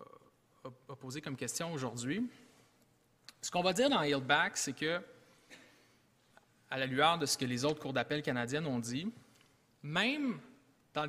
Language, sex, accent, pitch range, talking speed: English, male, Canadian, 130-165 Hz, 145 wpm